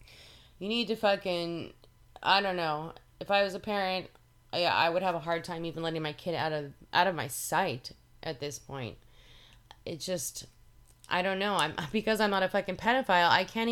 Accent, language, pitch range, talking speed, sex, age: American, English, 165-215 Hz, 200 wpm, female, 30-49